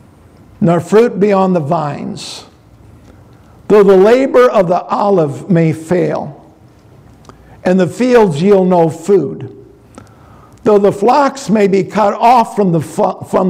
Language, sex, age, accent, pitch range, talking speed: English, male, 60-79, American, 155-205 Hz, 130 wpm